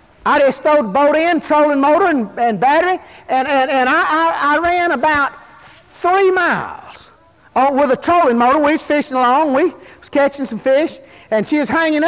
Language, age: English, 50-69